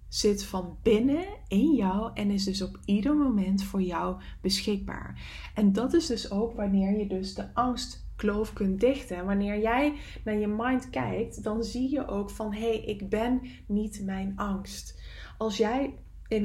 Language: English